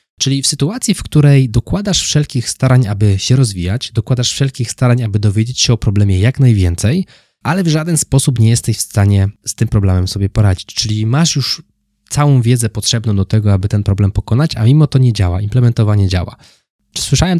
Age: 20-39